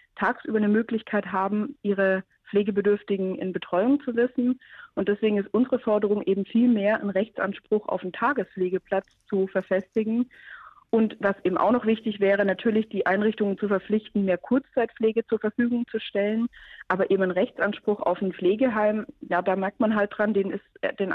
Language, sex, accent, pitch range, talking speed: German, female, German, 190-225 Hz, 165 wpm